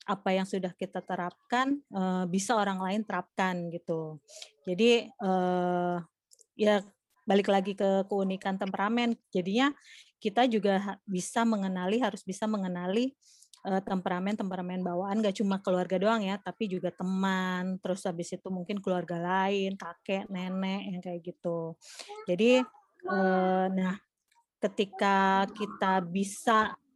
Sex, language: female, Indonesian